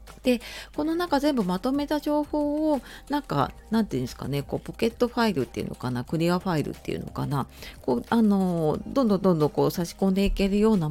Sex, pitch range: female, 155-230 Hz